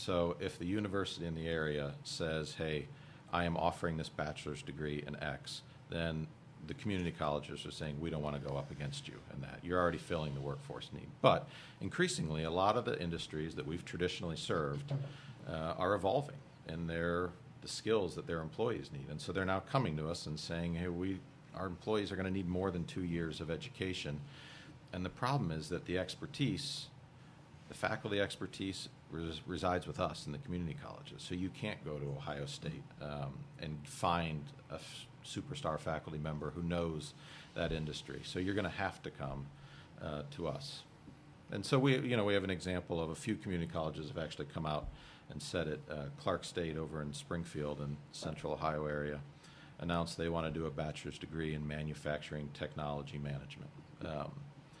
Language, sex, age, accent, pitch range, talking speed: English, male, 50-69, American, 75-95 Hz, 190 wpm